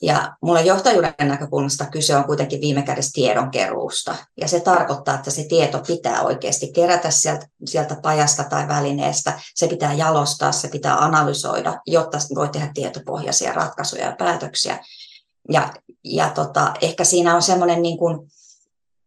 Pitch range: 145-165 Hz